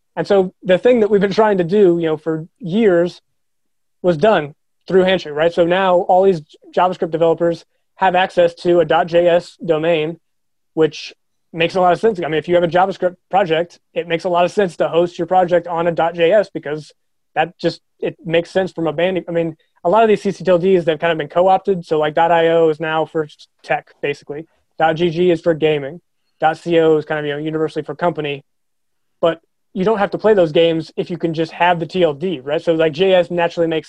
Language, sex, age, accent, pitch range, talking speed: English, male, 20-39, American, 155-180 Hz, 215 wpm